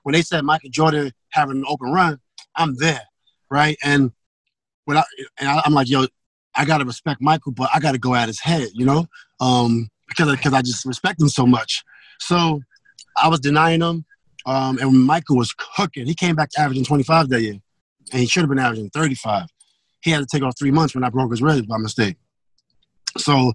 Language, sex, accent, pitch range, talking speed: English, male, American, 130-155 Hz, 215 wpm